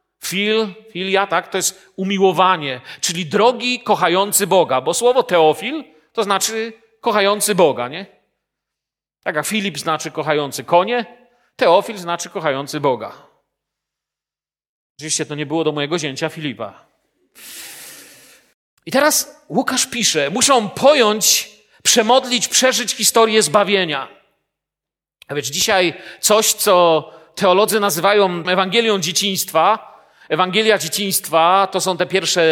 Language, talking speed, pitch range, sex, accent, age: Polish, 115 wpm, 160-220 Hz, male, native, 40-59